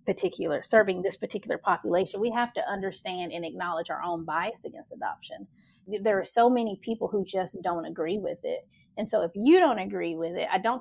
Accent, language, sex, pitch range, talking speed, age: American, English, female, 175-220 Hz, 205 wpm, 30-49